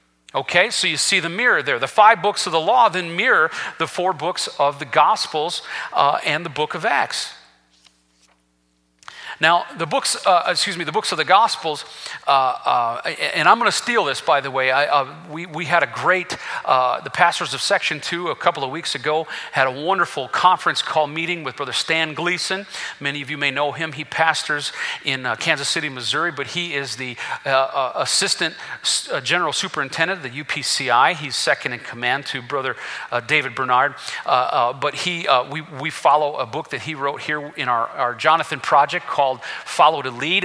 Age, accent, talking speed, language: 40-59, American, 200 wpm, English